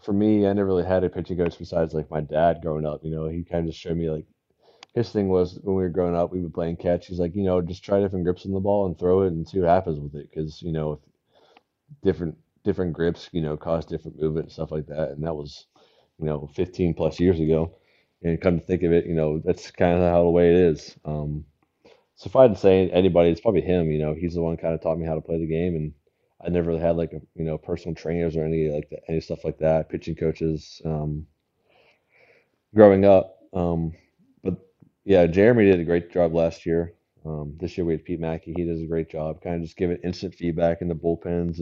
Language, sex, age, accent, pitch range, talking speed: English, male, 20-39, American, 80-90 Hz, 255 wpm